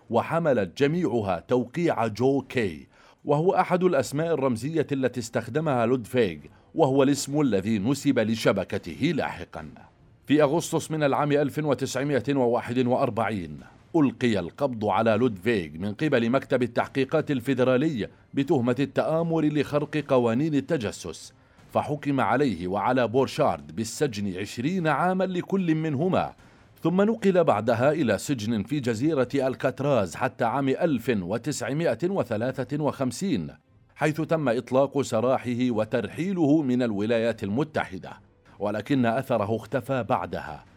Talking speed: 100 wpm